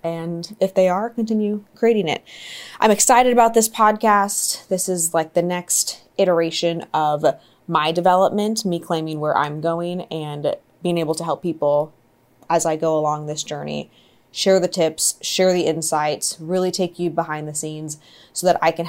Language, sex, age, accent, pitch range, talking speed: English, female, 20-39, American, 155-175 Hz, 170 wpm